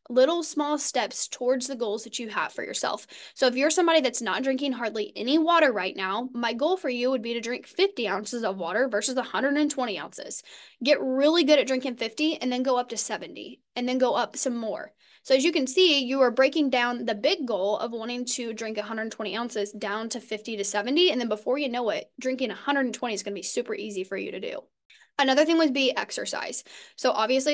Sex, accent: female, American